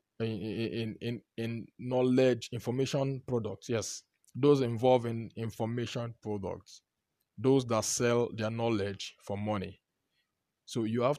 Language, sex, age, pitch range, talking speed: English, male, 20-39, 105-135 Hz, 120 wpm